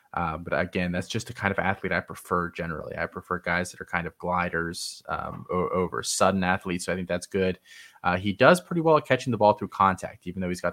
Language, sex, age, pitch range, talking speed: English, male, 20-39, 90-110 Hz, 245 wpm